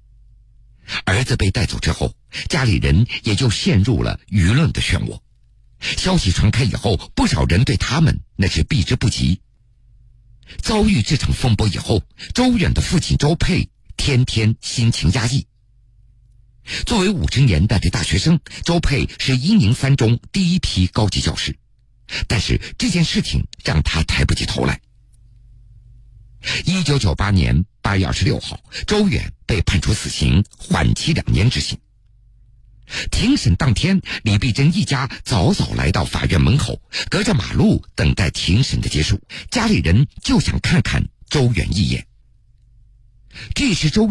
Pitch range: 100-125 Hz